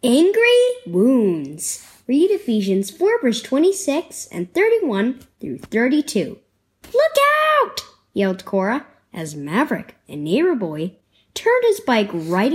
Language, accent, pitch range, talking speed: English, American, 195-325 Hz, 115 wpm